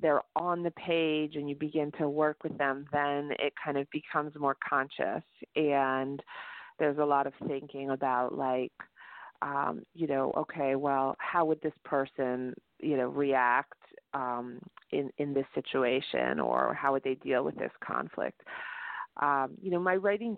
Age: 30-49